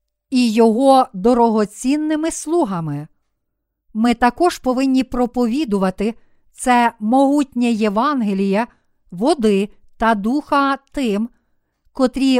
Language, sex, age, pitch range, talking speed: Ukrainian, female, 50-69, 215-270 Hz, 75 wpm